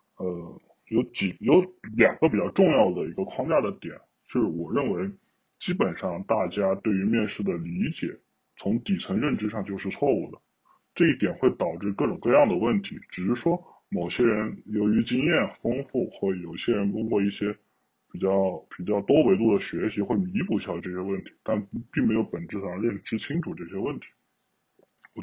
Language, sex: Chinese, female